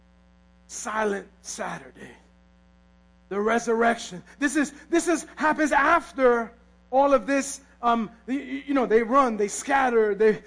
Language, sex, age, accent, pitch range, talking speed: English, male, 40-59, American, 190-280 Hz, 125 wpm